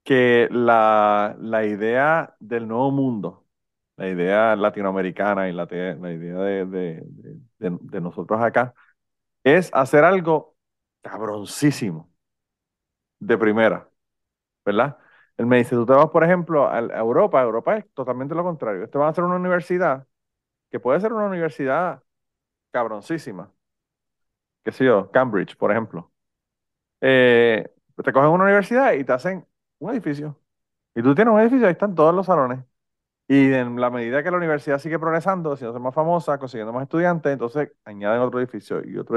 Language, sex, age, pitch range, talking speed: Spanish, male, 30-49, 115-155 Hz, 160 wpm